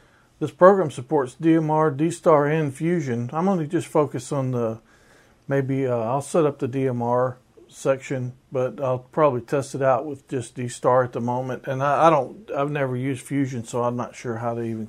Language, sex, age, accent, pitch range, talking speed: English, male, 50-69, American, 120-150 Hz, 195 wpm